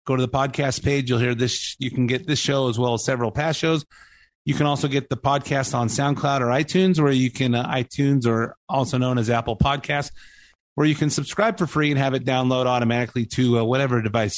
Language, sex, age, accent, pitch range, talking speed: English, male, 30-49, American, 125-150 Hz, 230 wpm